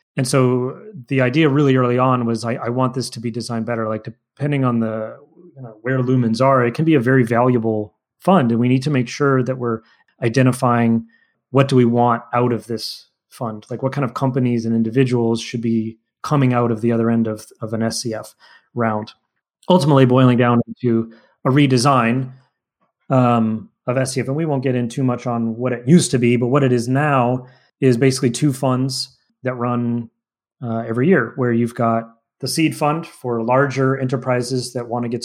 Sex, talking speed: male, 200 wpm